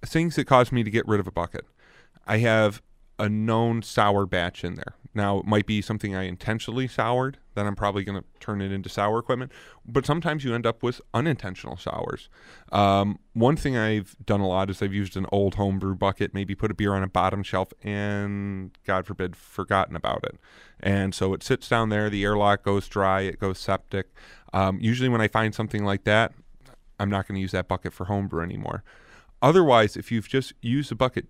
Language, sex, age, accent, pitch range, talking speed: English, male, 30-49, American, 95-115 Hz, 205 wpm